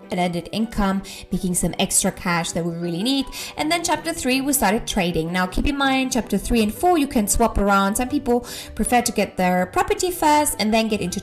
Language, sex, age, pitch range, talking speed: English, female, 20-39, 190-240 Hz, 225 wpm